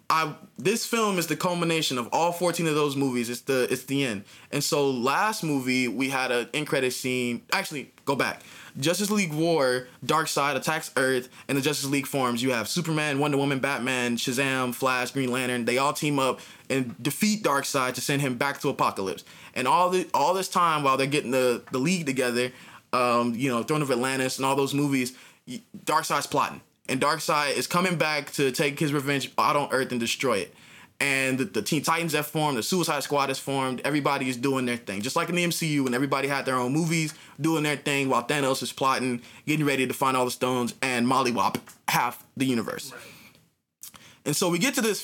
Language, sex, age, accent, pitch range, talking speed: English, male, 20-39, American, 130-160 Hz, 210 wpm